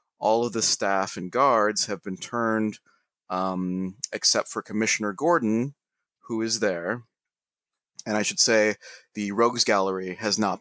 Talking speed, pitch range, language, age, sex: 145 wpm, 100-125 Hz, English, 30-49, male